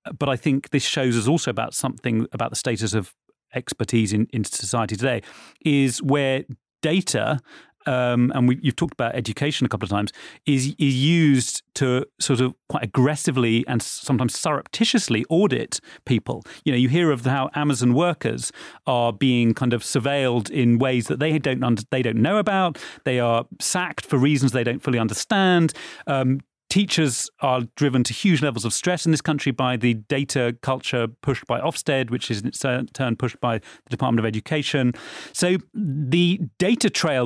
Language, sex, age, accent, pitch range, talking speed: English, male, 30-49, British, 120-155 Hz, 180 wpm